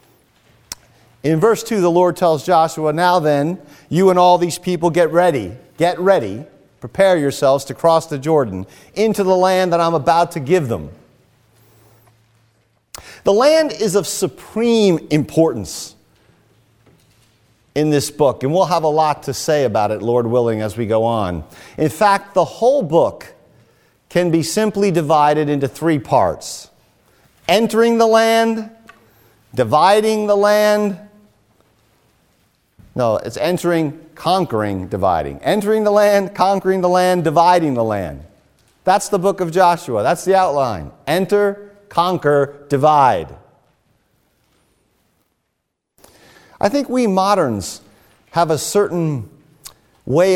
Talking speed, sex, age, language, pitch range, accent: 130 wpm, male, 50-69, English, 115-185 Hz, American